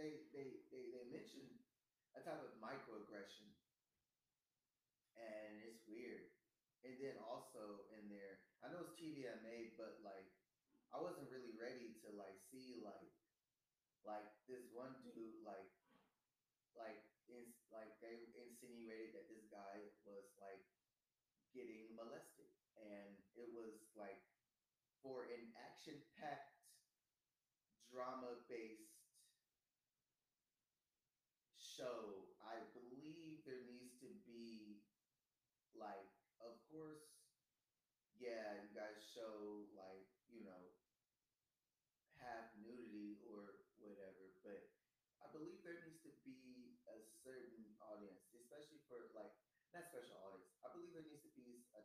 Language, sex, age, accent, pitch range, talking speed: English, male, 20-39, American, 105-130 Hz, 120 wpm